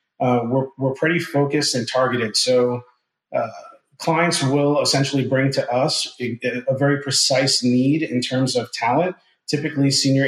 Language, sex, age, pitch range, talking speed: English, male, 30-49, 125-140 Hz, 150 wpm